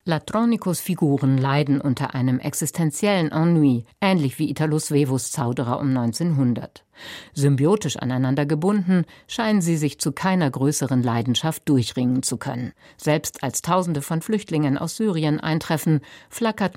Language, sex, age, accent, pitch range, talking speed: German, female, 50-69, German, 135-175 Hz, 130 wpm